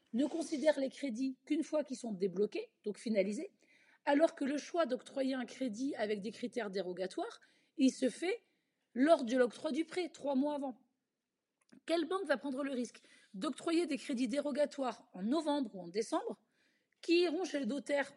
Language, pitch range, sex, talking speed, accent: French, 250-315 Hz, female, 175 wpm, French